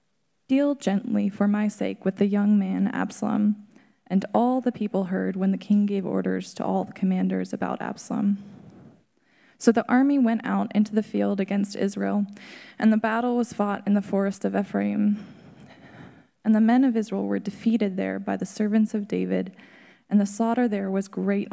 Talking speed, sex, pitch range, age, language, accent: 180 wpm, female, 195-225 Hz, 20-39, English, American